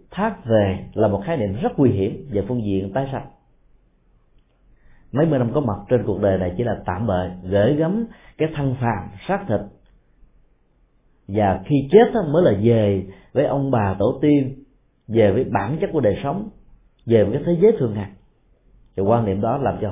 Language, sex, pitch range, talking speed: Vietnamese, male, 100-145 Hz, 195 wpm